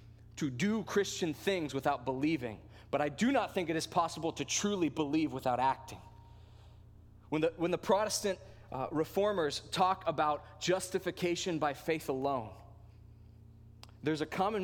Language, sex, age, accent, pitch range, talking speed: English, male, 20-39, American, 105-155 Hz, 145 wpm